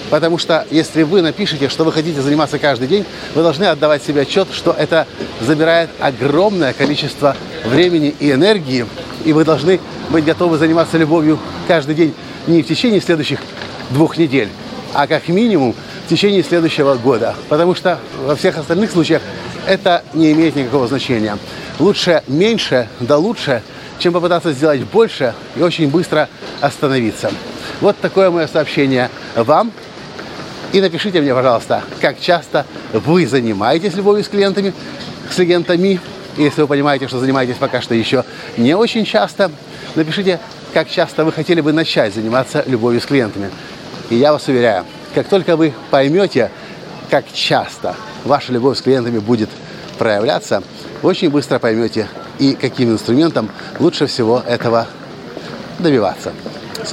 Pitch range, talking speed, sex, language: 135-170 Hz, 145 wpm, male, Russian